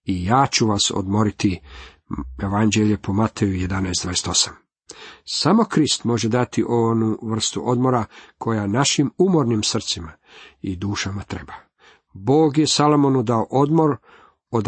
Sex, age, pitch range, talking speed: male, 50-69, 105-140 Hz, 120 wpm